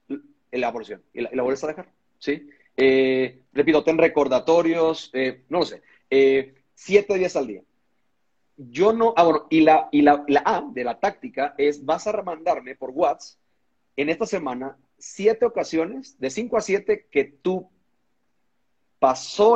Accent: Mexican